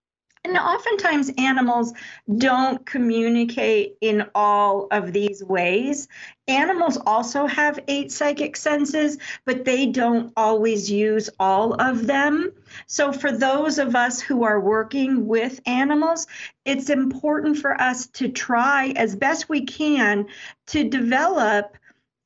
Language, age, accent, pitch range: English, 50-69, American, 220-285 Hz